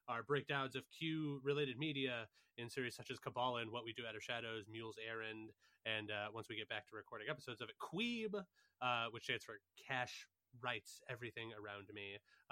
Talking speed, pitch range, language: 185 wpm, 110-140 Hz, English